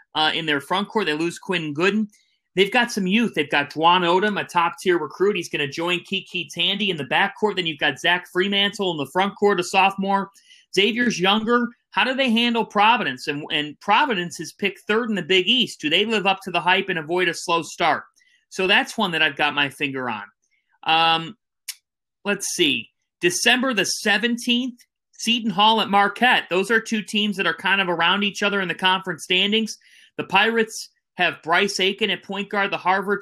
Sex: male